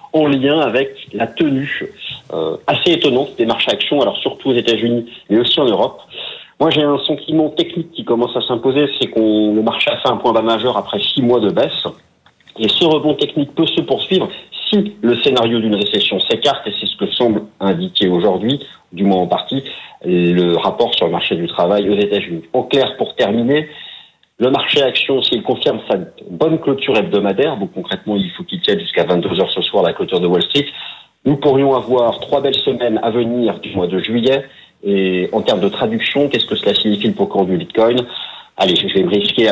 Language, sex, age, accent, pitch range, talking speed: French, male, 40-59, French, 105-145 Hz, 210 wpm